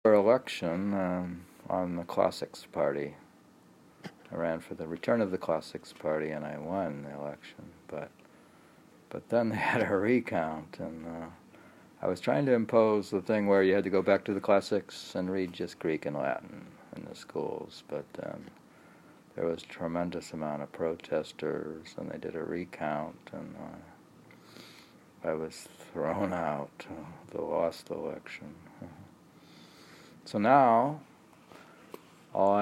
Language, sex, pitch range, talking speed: English, male, 85-110 Hz, 150 wpm